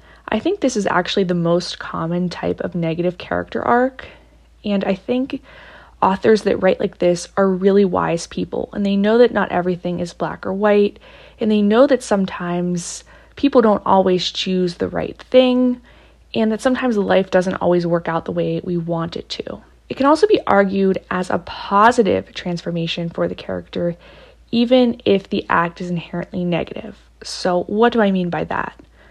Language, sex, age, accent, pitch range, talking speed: English, female, 20-39, American, 175-210 Hz, 180 wpm